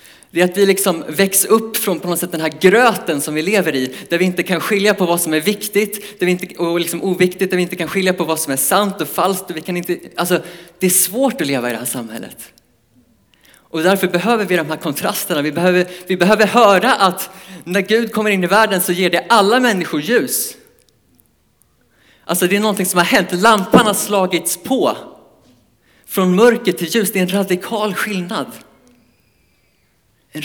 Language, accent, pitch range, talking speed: Swedish, Norwegian, 150-195 Hz, 205 wpm